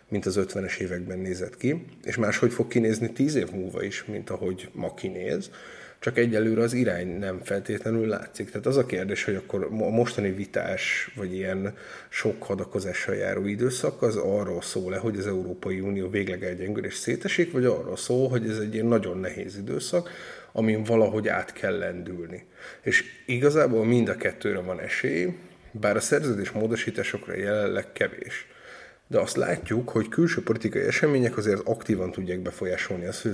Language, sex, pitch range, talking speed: Hungarian, male, 95-115 Hz, 165 wpm